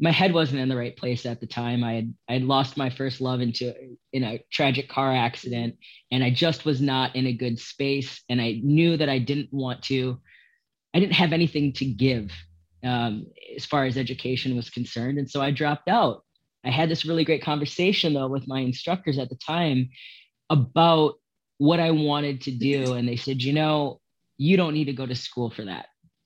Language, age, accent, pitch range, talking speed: English, 30-49, American, 125-150 Hz, 210 wpm